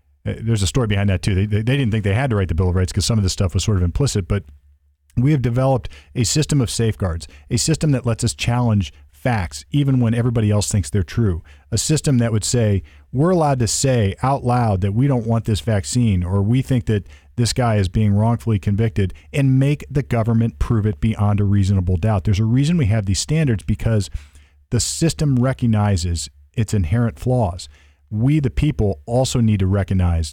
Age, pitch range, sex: 40-59, 95-125 Hz, male